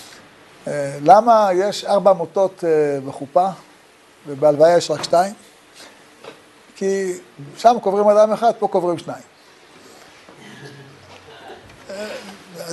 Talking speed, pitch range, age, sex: 95 wpm, 160-235 Hz, 60-79, male